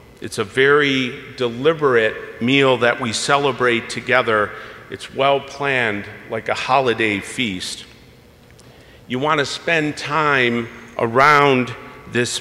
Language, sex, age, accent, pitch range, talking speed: English, male, 50-69, American, 115-145 Hz, 110 wpm